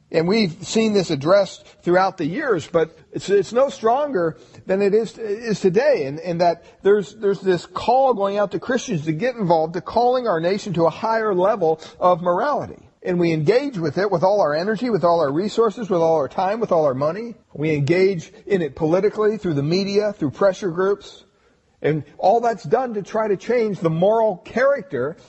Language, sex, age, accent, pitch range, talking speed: English, male, 50-69, American, 165-220 Hz, 200 wpm